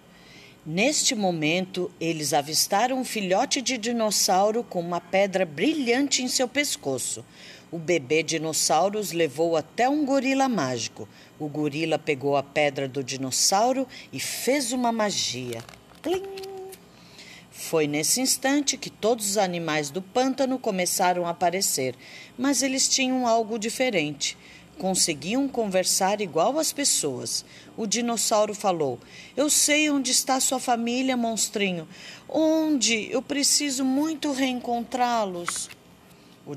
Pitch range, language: 165-260 Hz, Portuguese